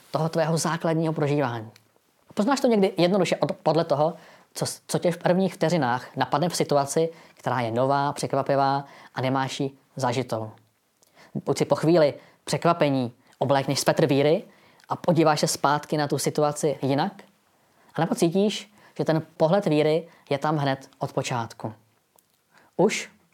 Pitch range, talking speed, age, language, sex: 135-170 Hz, 145 wpm, 20-39, Czech, female